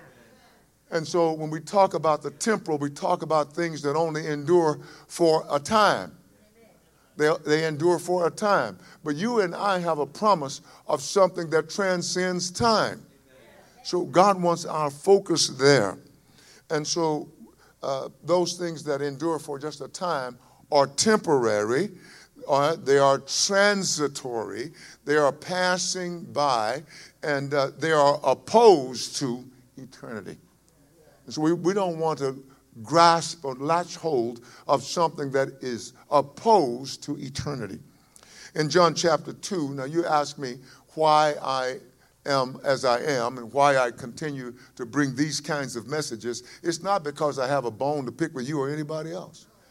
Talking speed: 150 wpm